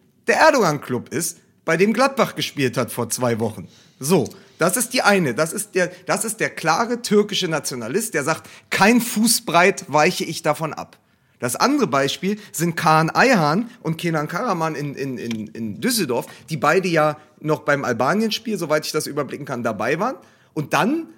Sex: male